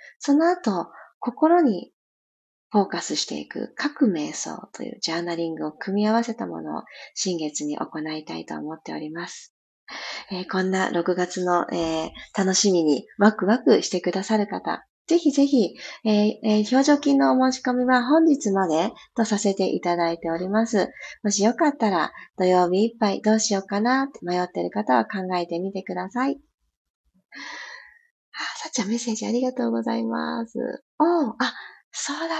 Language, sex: Japanese, female